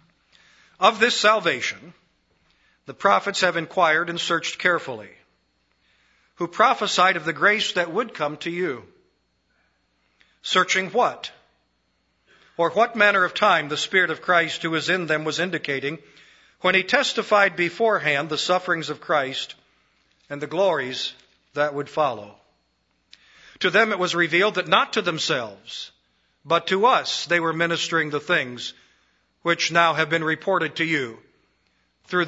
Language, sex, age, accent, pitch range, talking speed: English, male, 50-69, American, 150-185 Hz, 140 wpm